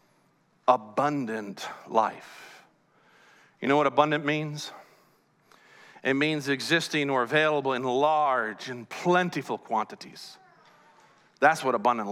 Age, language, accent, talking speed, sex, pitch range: 40-59, English, American, 100 wpm, male, 125-190 Hz